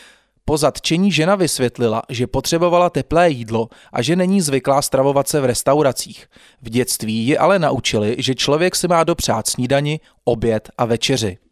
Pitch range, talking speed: 125-160 Hz, 155 wpm